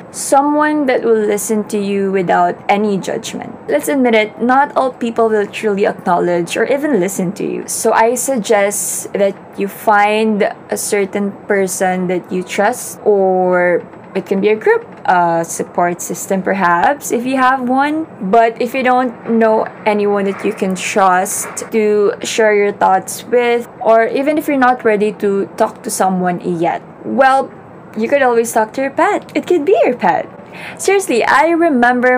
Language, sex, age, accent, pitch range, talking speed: English, female, 20-39, Filipino, 185-235 Hz, 170 wpm